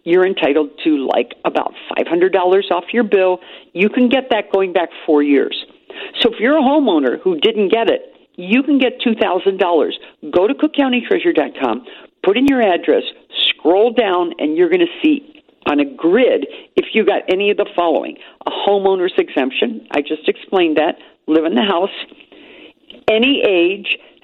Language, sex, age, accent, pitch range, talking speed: English, female, 50-69, American, 195-320 Hz, 165 wpm